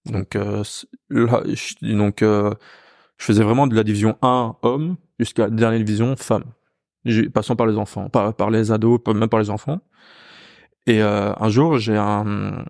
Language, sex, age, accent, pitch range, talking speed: French, male, 20-39, French, 110-140 Hz, 180 wpm